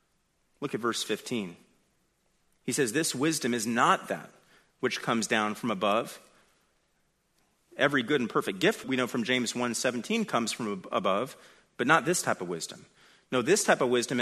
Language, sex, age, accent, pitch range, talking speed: English, male, 30-49, American, 120-160 Hz, 170 wpm